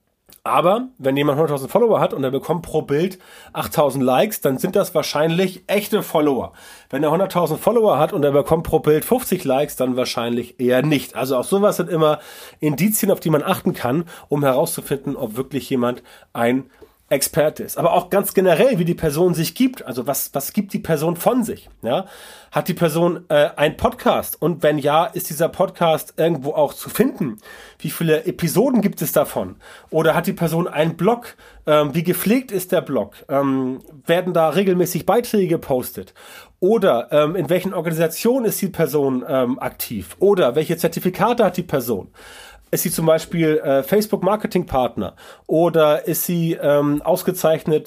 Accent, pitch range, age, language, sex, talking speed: German, 145-185 Hz, 30-49, German, male, 175 wpm